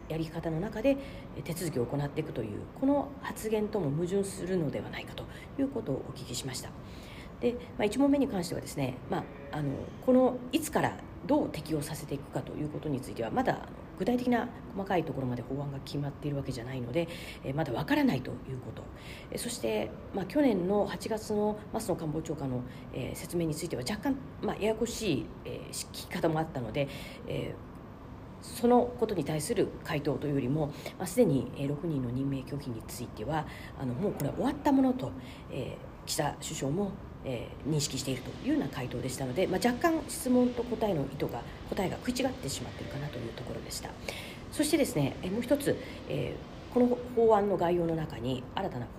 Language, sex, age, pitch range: Japanese, female, 40-59, 135-230 Hz